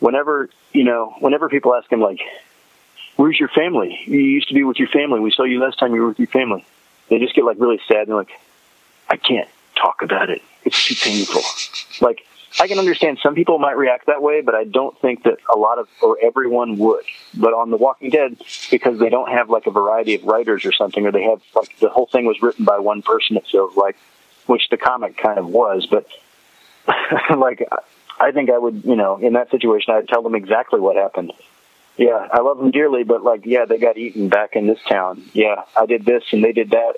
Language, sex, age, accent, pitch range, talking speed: English, male, 30-49, American, 110-140 Hz, 230 wpm